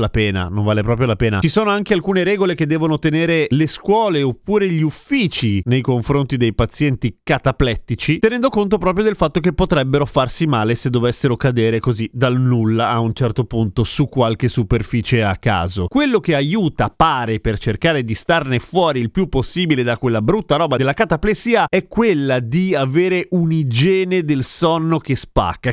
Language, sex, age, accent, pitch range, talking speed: Italian, male, 30-49, native, 120-175 Hz, 175 wpm